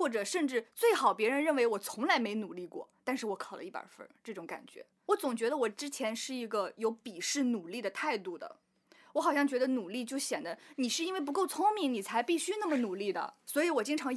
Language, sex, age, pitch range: Chinese, female, 20-39, 225-310 Hz